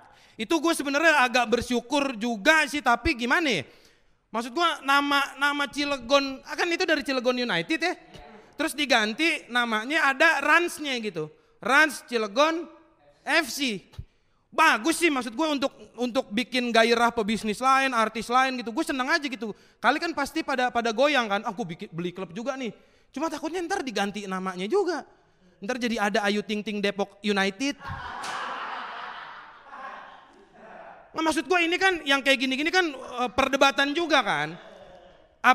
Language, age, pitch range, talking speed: Indonesian, 30-49, 235-315 Hz, 140 wpm